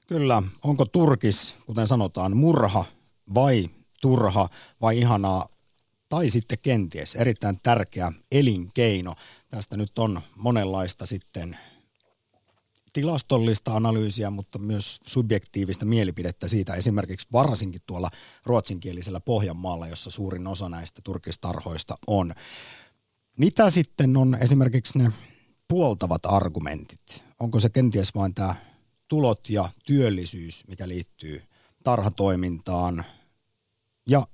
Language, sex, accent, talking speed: Finnish, male, native, 100 wpm